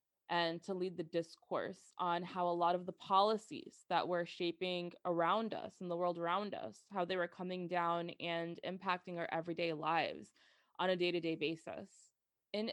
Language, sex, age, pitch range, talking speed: English, female, 20-39, 170-190 Hz, 175 wpm